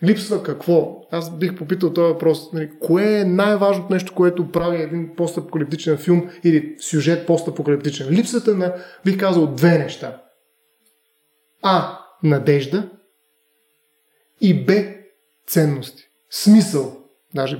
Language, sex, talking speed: Bulgarian, male, 115 wpm